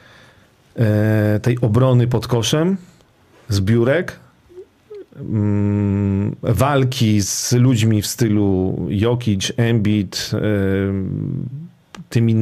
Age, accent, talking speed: 40-59, native, 65 wpm